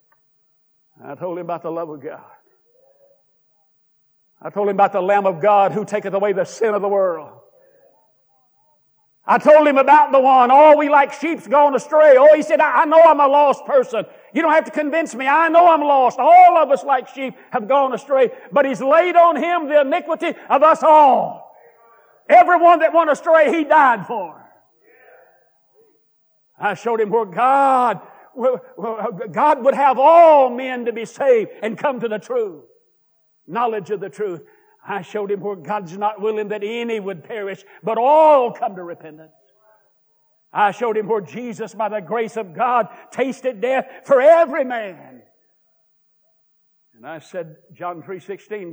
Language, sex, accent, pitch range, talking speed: English, male, American, 205-305 Hz, 170 wpm